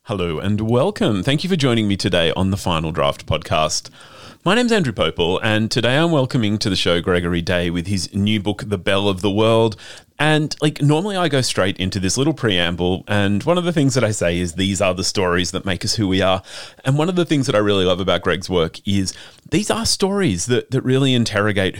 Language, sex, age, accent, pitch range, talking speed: English, male, 30-49, Australian, 95-135 Hz, 235 wpm